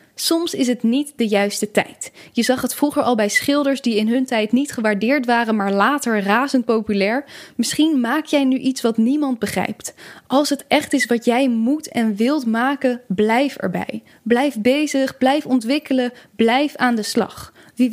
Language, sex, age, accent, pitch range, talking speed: Dutch, female, 10-29, Dutch, 220-270 Hz, 180 wpm